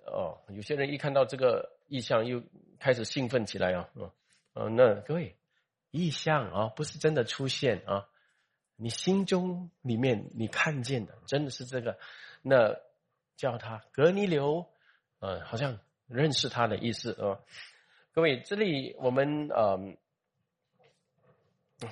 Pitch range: 125-185 Hz